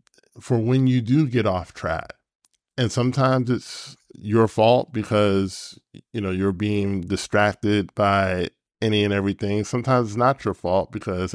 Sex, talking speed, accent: male, 150 wpm, American